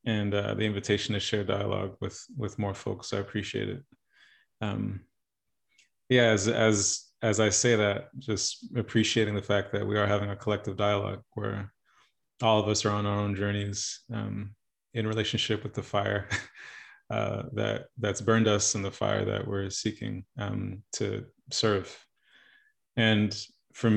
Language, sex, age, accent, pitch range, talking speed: English, male, 30-49, American, 100-115 Hz, 160 wpm